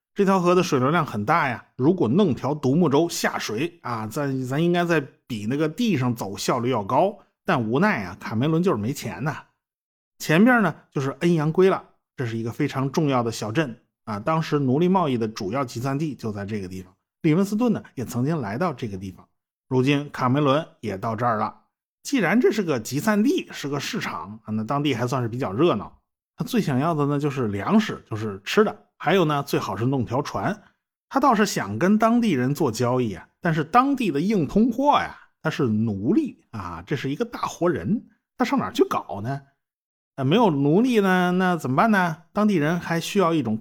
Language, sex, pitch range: Chinese, male, 125-190 Hz